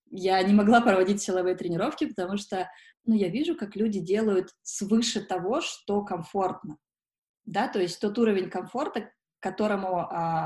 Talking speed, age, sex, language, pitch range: 155 wpm, 20-39, female, Russian, 175-220 Hz